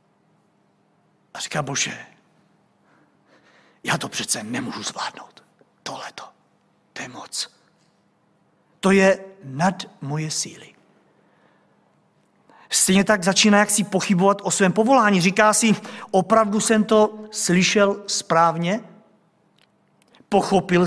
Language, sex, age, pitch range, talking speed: Czech, male, 50-69, 165-210 Hz, 95 wpm